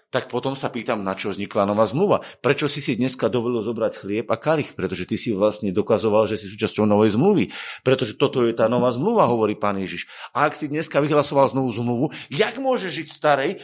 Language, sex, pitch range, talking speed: Slovak, male, 115-160 Hz, 210 wpm